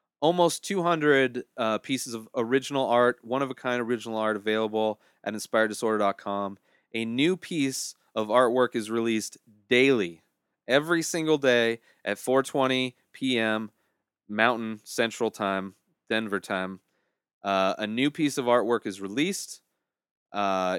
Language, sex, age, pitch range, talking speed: English, male, 30-49, 105-135 Hz, 120 wpm